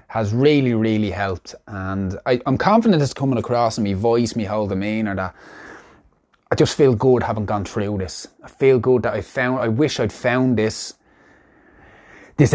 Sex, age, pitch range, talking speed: male, 20-39, 100-125 Hz, 190 wpm